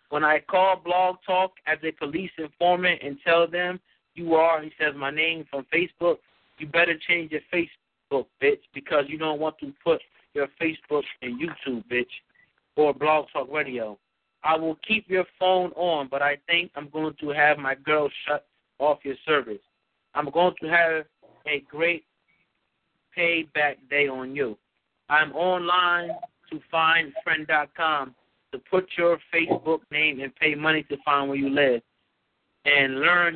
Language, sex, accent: Japanese, male, American